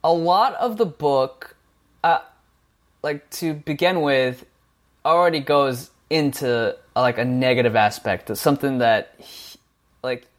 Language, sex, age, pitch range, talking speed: English, male, 20-39, 125-160 Hz, 120 wpm